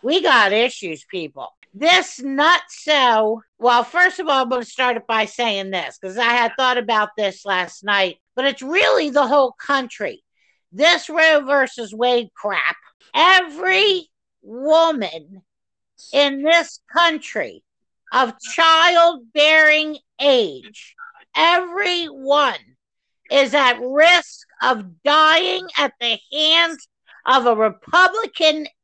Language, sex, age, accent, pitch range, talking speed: English, female, 50-69, American, 250-335 Hz, 120 wpm